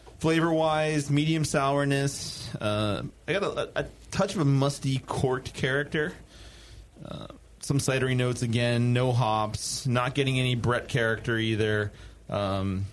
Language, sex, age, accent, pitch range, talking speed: English, male, 30-49, American, 105-125 Hz, 140 wpm